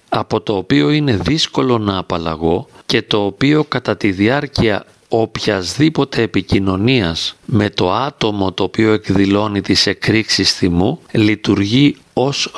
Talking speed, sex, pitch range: 125 wpm, male, 100-135 Hz